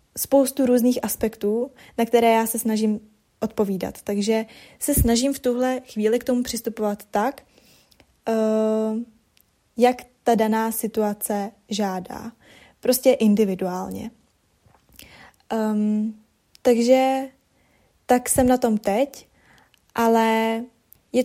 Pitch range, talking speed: 215-245 Hz, 95 wpm